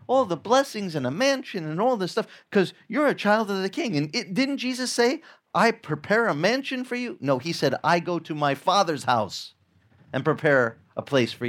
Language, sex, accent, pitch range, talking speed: English, male, American, 145-230 Hz, 215 wpm